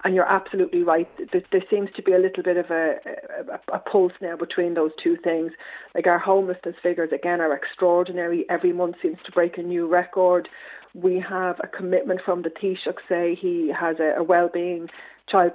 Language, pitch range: English, 165-185 Hz